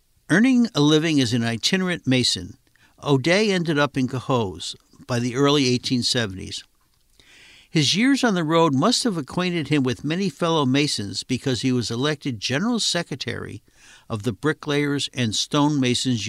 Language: English